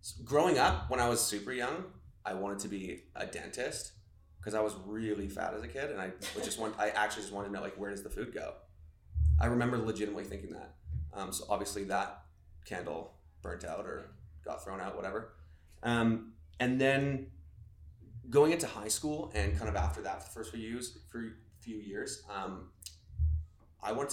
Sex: male